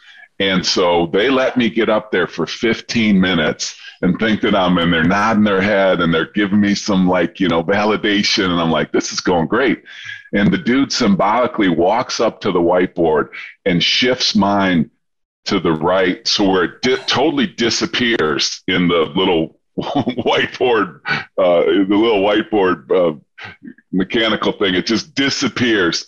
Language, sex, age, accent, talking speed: English, female, 40-59, American, 165 wpm